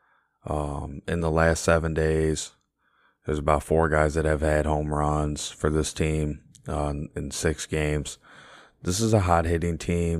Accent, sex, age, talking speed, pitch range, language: American, male, 20-39, 160 wpm, 75-80 Hz, English